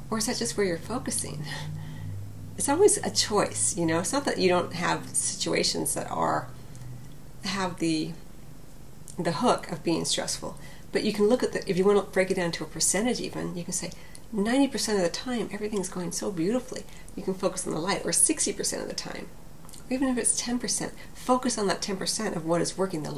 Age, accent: 40-59, American